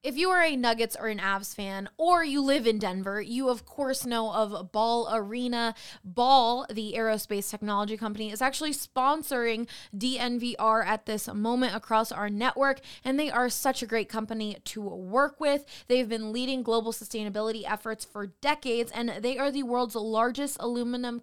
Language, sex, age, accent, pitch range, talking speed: English, female, 20-39, American, 220-255 Hz, 170 wpm